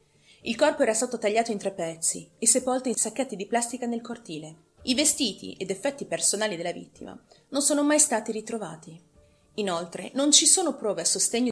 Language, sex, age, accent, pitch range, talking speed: Italian, female, 30-49, native, 170-230 Hz, 180 wpm